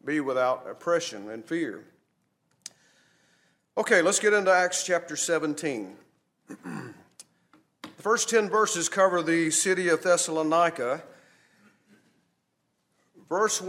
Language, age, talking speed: English, 40-59, 95 wpm